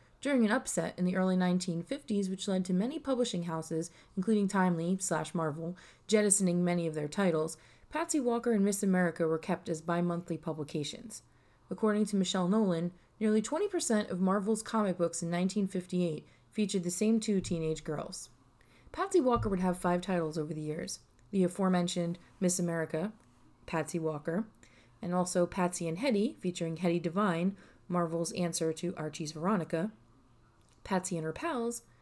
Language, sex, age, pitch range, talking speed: English, female, 30-49, 165-215 Hz, 150 wpm